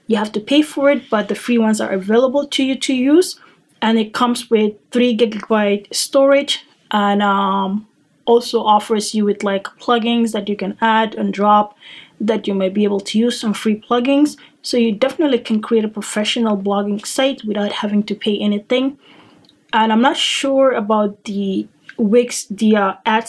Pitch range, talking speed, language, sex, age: 210-245 Hz, 180 wpm, English, female, 20-39